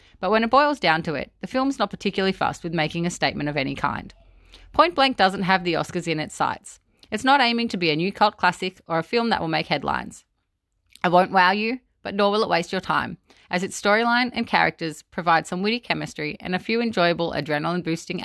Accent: Australian